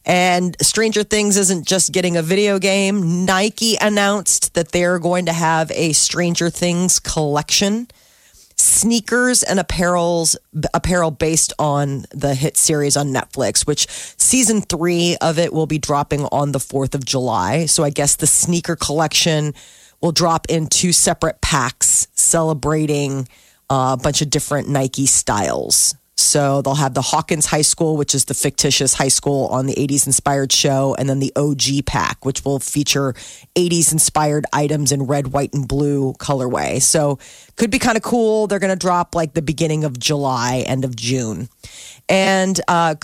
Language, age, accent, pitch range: Japanese, 30-49, American, 140-185 Hz